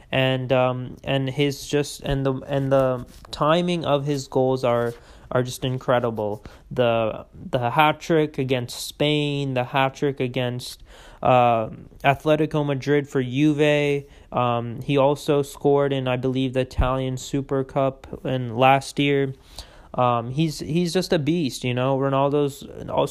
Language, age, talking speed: English, 20-39, 145 wpm